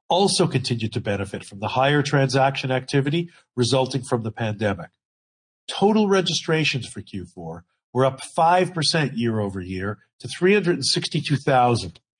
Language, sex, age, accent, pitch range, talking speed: English, male, 50-69, American, 110-165 Hz, 115 wpm